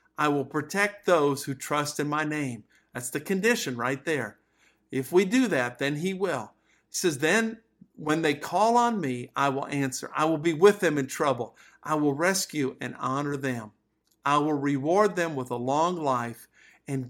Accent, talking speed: American, 190 wpm